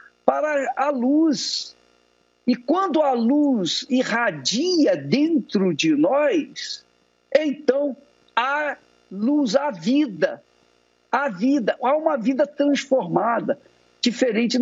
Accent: Brazilian